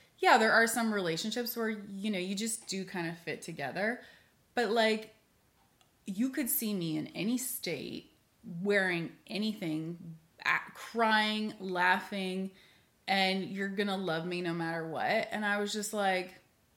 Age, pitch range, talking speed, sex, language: 20-39, 180-220 Hz, 150 wpm, female, English